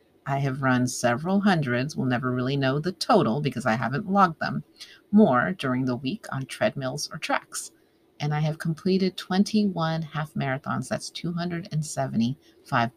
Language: English